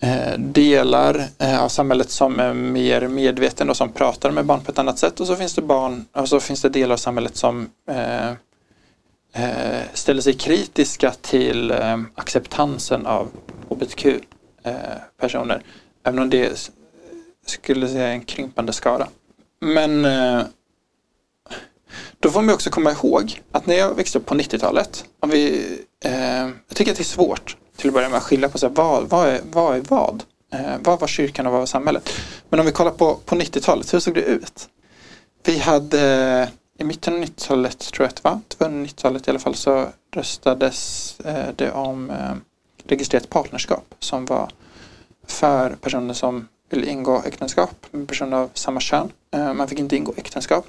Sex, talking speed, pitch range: male, 175 wpm, 125-150 Hz